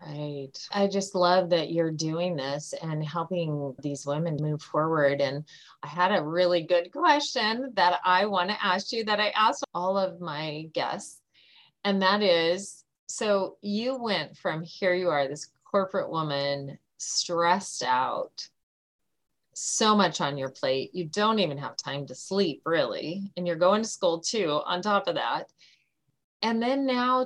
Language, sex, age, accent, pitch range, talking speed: English, female, 30-49, American, 155-200 Hz, 165 wpm